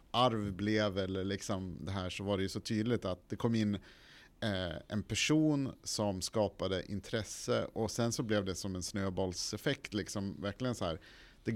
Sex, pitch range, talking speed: male, 95-120 Hz, 180 wpm